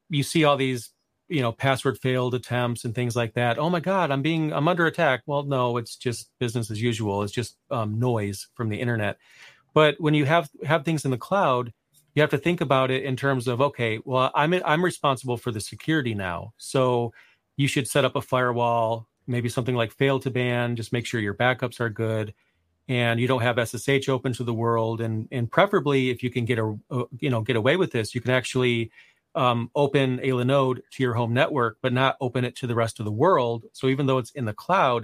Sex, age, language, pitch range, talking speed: male, 30-49, English, 115-135 Hz, 235 wpm